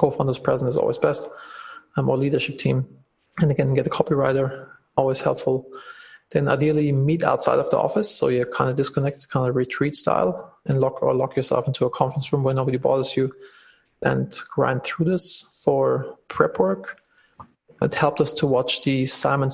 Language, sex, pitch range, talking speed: English, male, 130-155 Hz, 180 wpm